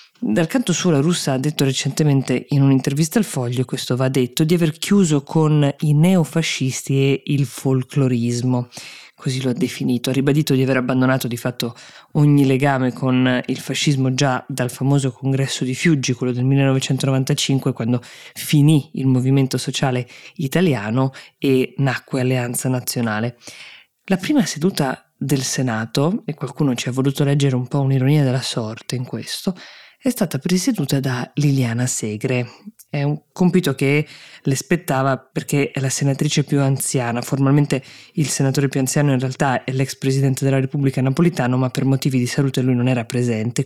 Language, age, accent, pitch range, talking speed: Italian, 20-39, native, 130-150 Hz, 160 wpm